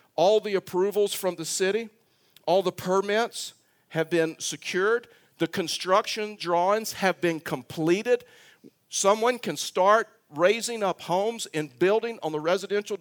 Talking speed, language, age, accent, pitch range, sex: 135 wpm, English, 50-69, American, 160-205 Hz, male